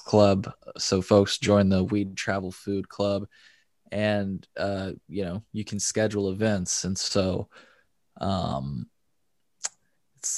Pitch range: 95-105 Hz